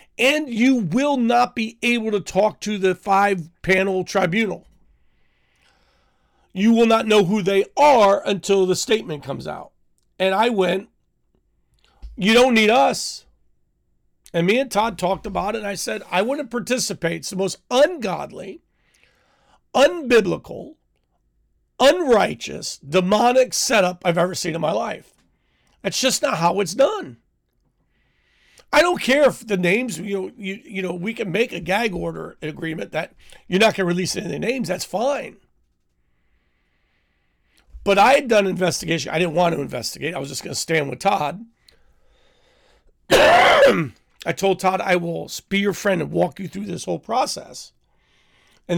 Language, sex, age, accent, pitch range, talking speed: English, male, 40-59, American, 165-225 Hz, 155 wpm